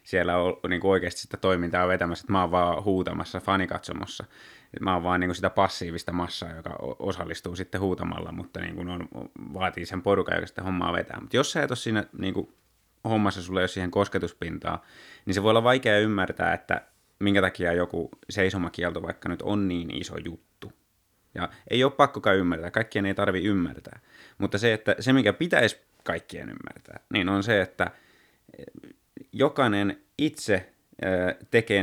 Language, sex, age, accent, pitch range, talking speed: Finnish, male, 20-39, native, 90-115 Hz, 170 wpm